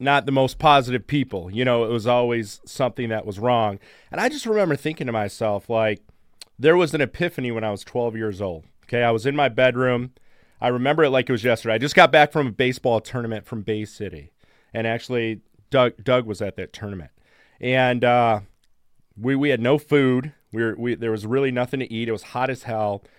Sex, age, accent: male, 40-59, American